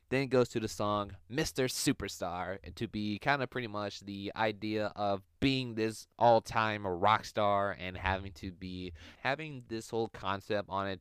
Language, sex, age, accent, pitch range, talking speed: English, male, 20-39, American, 95-115 Hz, 175 wpm